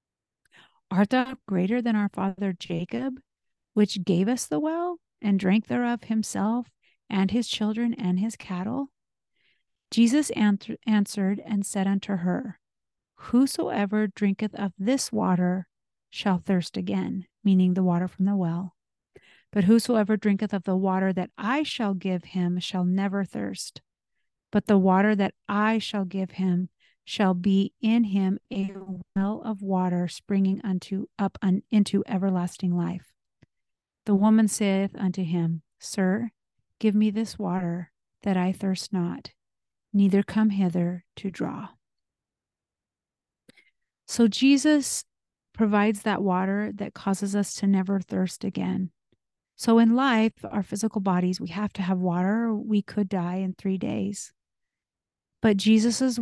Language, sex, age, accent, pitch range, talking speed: English, female, 40-59, American, 185-220 Hz, 135 wpm